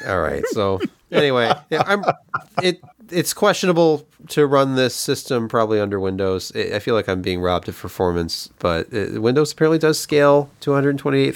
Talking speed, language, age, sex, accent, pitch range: 170 wpm, English, 30-49, male, American, 110-155 Hz